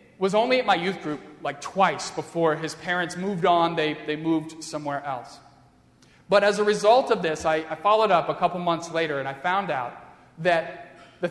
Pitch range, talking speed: 165-205 Hz, 200 wpm